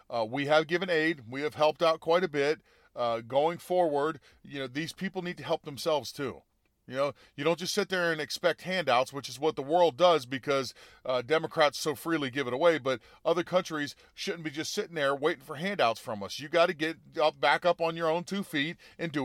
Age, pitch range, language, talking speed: 40-59, 145-180 Hz, English, 235 wpm